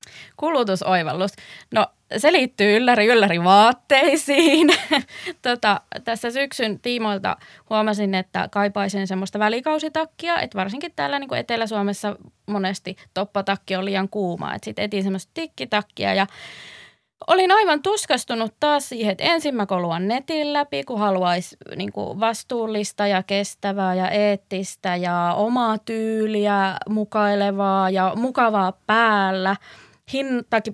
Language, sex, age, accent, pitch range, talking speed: Finnish, female, 20-39, native, 195-250 Hz, 115 wpm